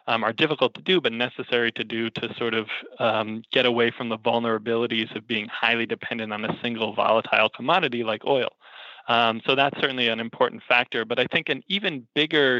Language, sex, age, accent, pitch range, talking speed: English, male, 20-39, American, 115-130 Hz, 200 wpm